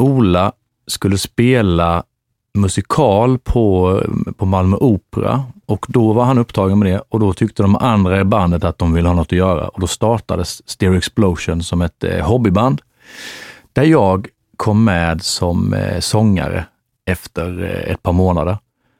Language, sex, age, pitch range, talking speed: Swedish, male, 40-59, 90-120 Hz, 160 wpm